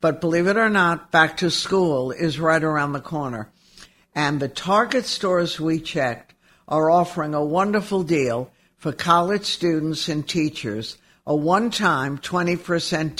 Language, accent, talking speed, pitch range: English, American, 145 wpm, 145-180 Hz